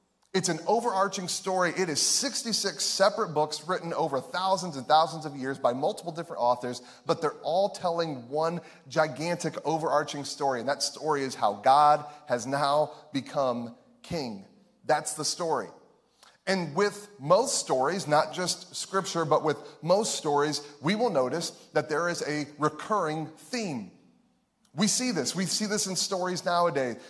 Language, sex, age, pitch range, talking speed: English, male, 30-49, 135-175 Hz, 155 wpm